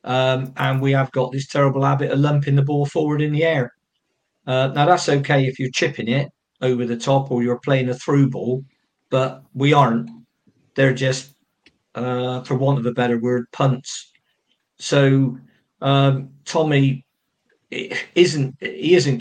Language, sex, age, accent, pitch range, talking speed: English, male, 50-69, British, 125-145 Hz, 160 wpm